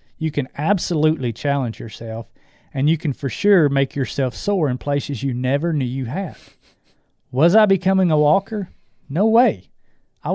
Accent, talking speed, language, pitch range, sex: American, 160 wpm, English, 125-155 Hz, male